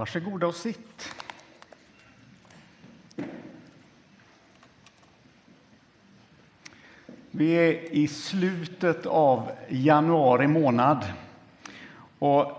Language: Swedish